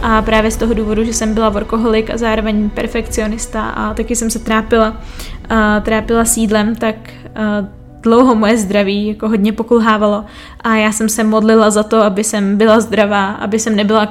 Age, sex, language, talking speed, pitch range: 20-39, female, Czech, 170 wpm, 215-235 Hz